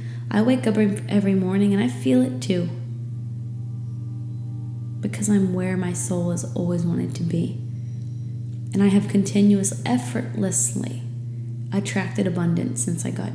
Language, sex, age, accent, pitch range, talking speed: English, female, 30-49, American, 110-120 Hz, 135 wpm